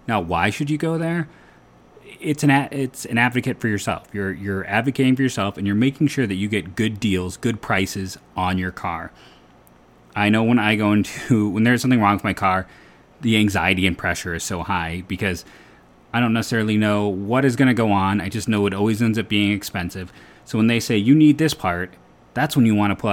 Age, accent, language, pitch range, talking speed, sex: 30-49, American, English, 100-130 Hz, 225 wpm, male